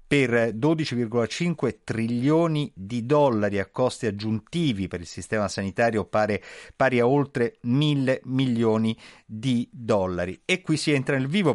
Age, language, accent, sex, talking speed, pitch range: 50-69, Italian, native, male, 130 wpm, 110-145 Hz